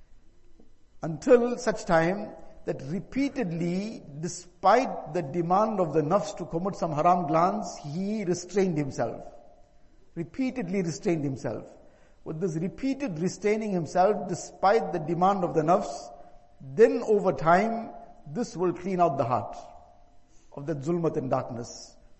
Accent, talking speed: Indian, 125 wpm